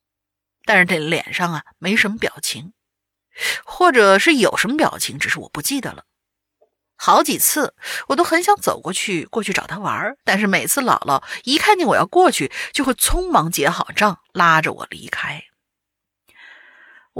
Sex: female